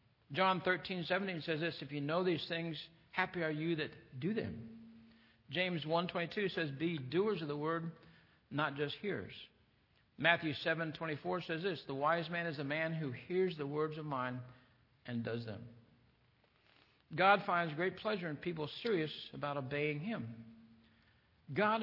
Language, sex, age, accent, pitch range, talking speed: English, male, 60-79, American, 120-170 Hz, 170 wpm